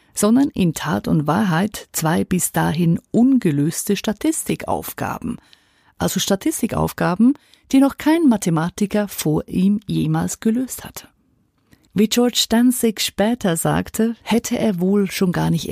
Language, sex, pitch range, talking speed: German, female, 160-225 Hz, 120 wpm